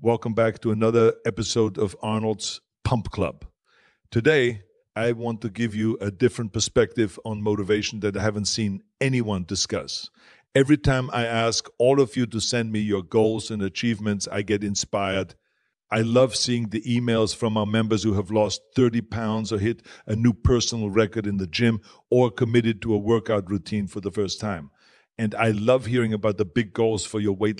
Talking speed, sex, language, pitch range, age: 185 wpm, male, English, 100-115 Hz, 50-69